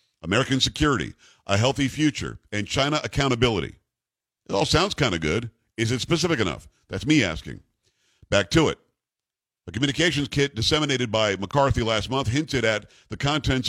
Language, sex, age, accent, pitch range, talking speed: English, male, 50-69, American, 110-140 Hz, 160 wpm